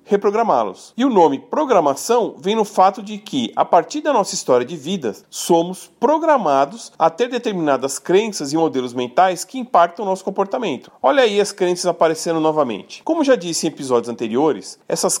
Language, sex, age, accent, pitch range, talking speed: Portuguese, male, 40-59, Brazilian, 165-225 Hz, 175 wpm